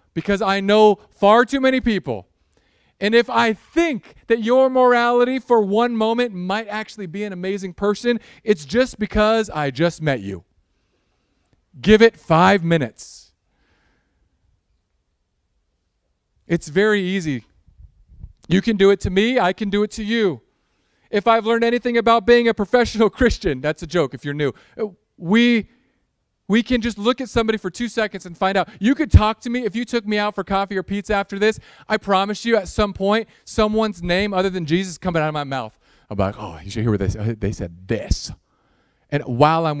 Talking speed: 185 wpm